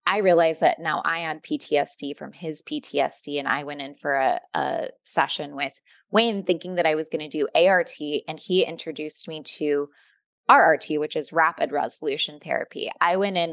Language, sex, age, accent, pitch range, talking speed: English, female, 20-39, American, 160-205 Hz, 185 wpm